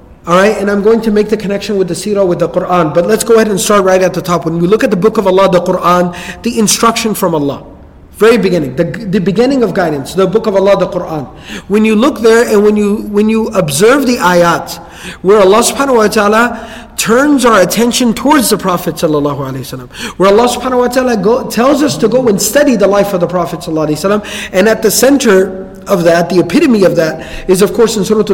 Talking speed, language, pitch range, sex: 230 wpm, English, 180-230 Hz, male